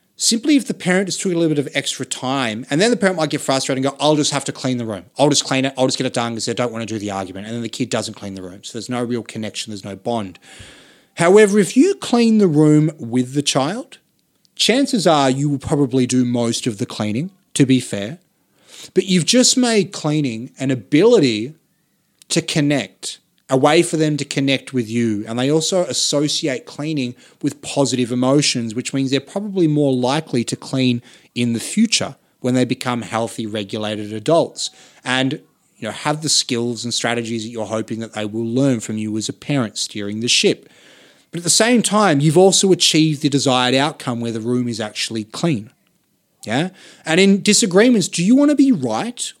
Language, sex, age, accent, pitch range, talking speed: English, male, 30-49, Australian, 120-160 Hz, 215 wpm